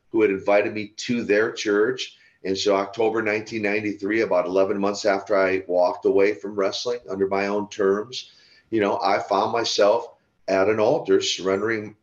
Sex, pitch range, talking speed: male, 100-135 Hz, 165 wpm